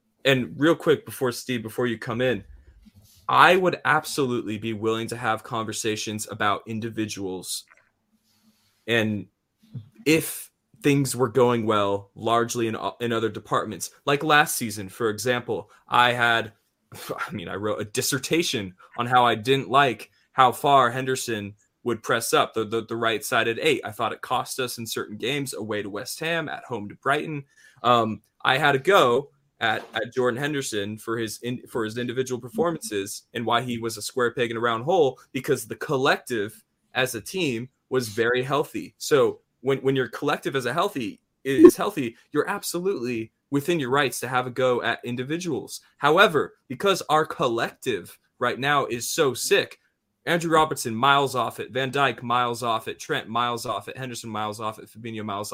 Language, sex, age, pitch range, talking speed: English, male, 20-39, 110-135 Hz, 175 wpm